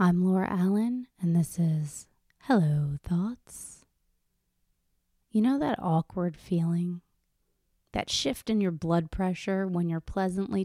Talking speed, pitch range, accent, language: 125 wpm, 160-190 Hz, American, English